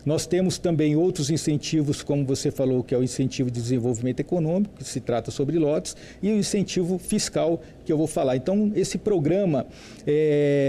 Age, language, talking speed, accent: 50-69, Portuguese, 180 wpm, Brazilian